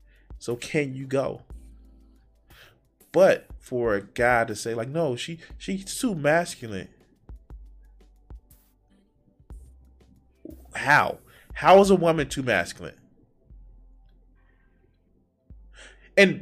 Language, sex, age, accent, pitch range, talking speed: English, male, 20-39, American, 100-155 Hz, 85 wpm